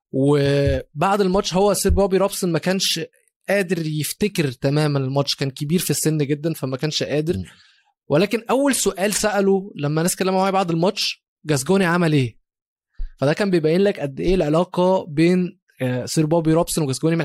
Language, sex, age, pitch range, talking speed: Arabic, male, 20-39, 140-180 Hz, 155 wpm